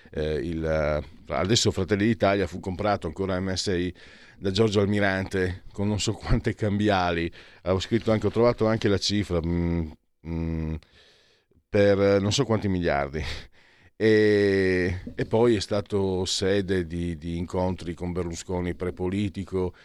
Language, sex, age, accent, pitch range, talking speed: Italian, male, 50-69, native, 85-100 Hz, 135 wpm